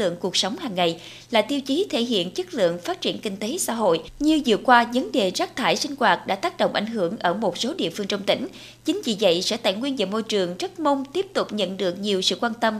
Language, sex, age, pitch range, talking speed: Vietnamese, female, 20-39, 205-275 Hz, 270 wpm